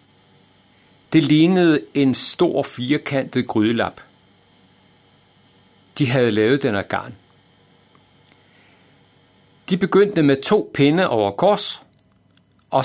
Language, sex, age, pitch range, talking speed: Danish, male, 60-79, 105-150 Hz, 90 wpm